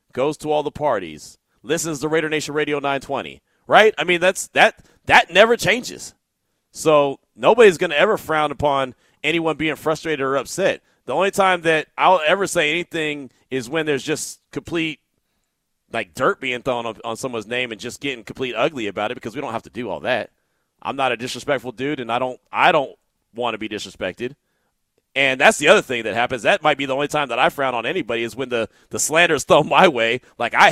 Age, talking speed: 30-49, 210 wpm